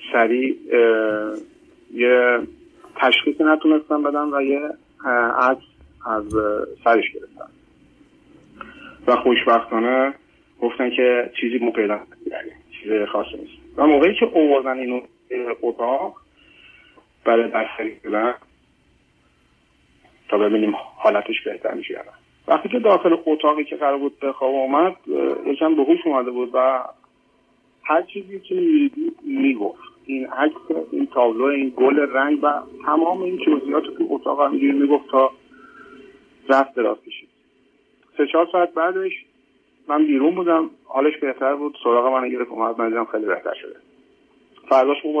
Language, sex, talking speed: Persian, male, 125 wpm